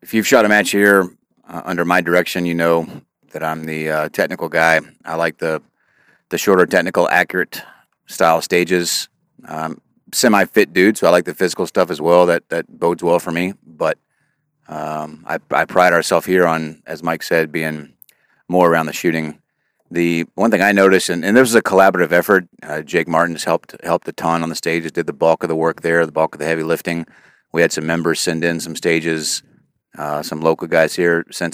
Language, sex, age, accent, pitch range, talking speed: English, male, 40-59, American, 80-90 Hz, 205 wpm